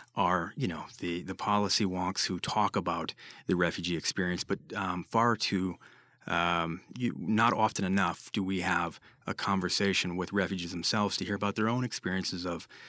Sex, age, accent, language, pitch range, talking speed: male, 30-49, American, English, 90-105 Hz, 170 wpm